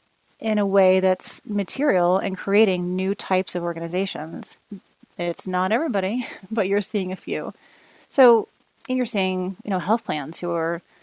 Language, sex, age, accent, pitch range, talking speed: English, female, 30-49, American, 175-200 Hz, 160 wpm